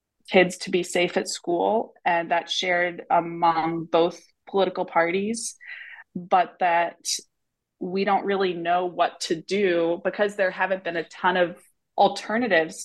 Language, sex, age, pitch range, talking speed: English, female, 20-39, 170-195 Hz, 140 wpm